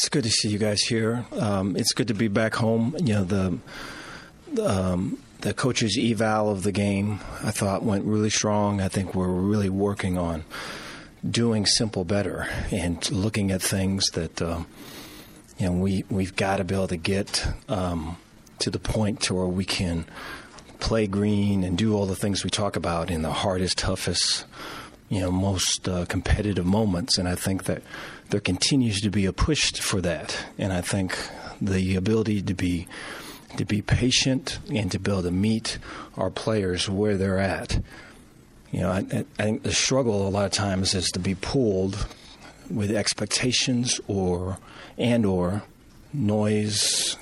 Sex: male